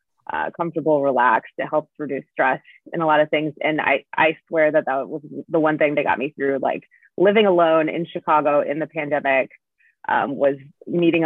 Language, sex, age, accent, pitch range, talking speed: English, female, 20-39, American, 150-170 Hz, 195 wpm